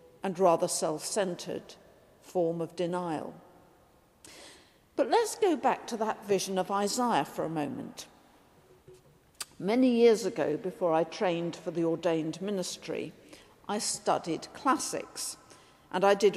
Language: English